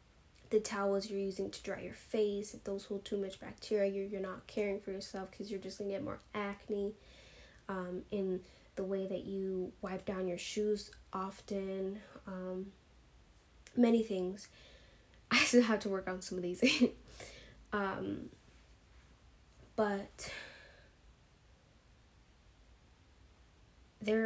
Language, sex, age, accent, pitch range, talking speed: English, female, 10-29, American, 190-215 Hz, 135 wpm